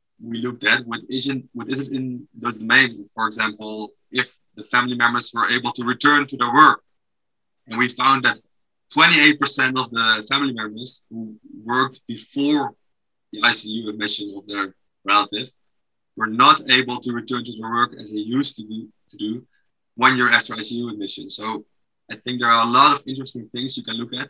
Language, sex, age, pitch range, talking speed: English, male, 20-39, 105-130 Hz, 180 wpm